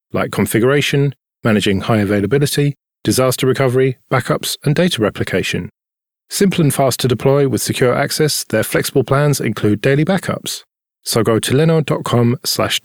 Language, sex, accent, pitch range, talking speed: English, male, British, 110-140 Hz, 135 wpm